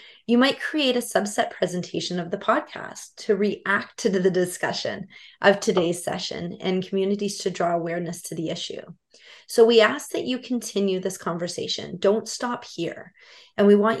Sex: female